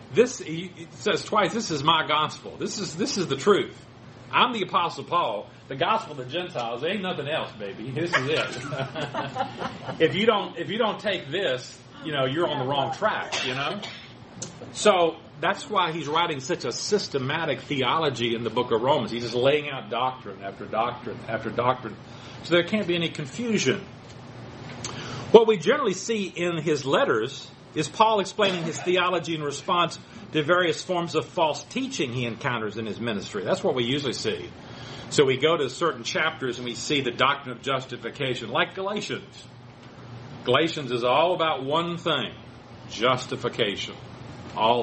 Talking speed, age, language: 175 wpm, 40-59, English